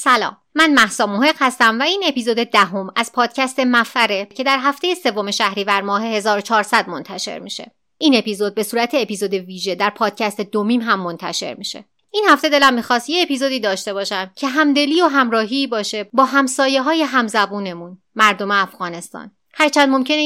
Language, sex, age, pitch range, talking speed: Persian, female, 30-49, 200-270 Hz, 165 wpm